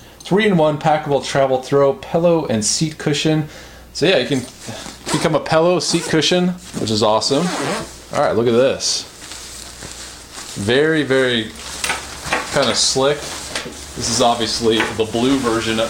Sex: male